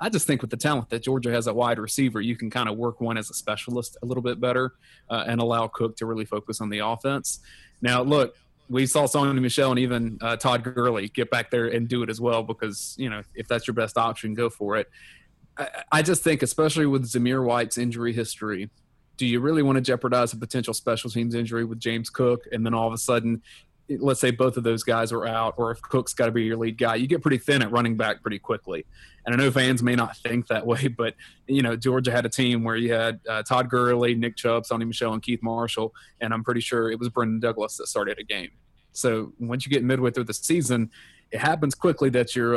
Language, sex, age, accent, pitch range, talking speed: English, male, 30-49, American, 115-125 Hz, 245 wpm